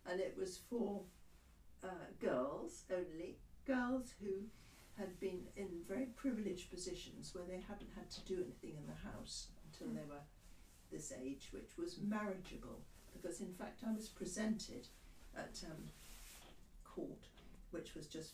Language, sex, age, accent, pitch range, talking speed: English, female, 60-79, British, 140-180 Hz, 145 wpm